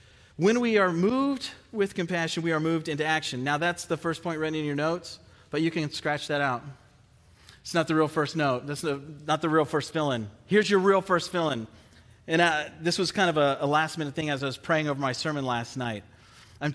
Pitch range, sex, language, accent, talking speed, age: 140-180 Hz, male, English, American, 220 wpm, 40-59